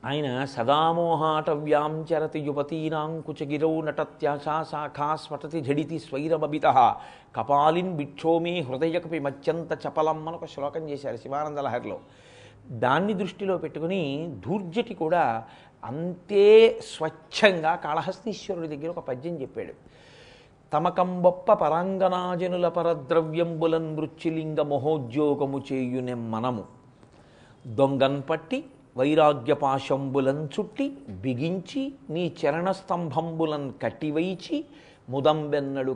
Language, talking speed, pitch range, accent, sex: Telugu, 85 wpm, 140-175 Hz, native, male